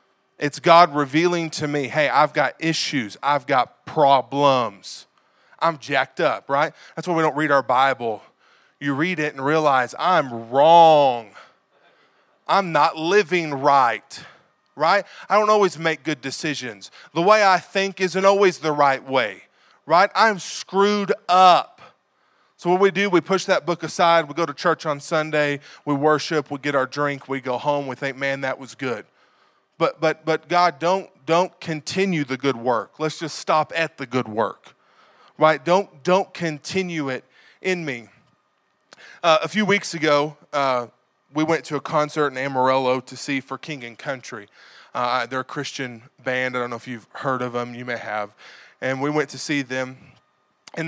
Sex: male